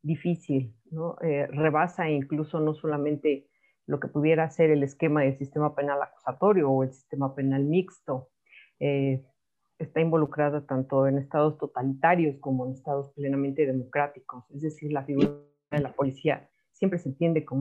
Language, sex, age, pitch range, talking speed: Spanish, female, 40-59, 140-170 Hz, 155 wpm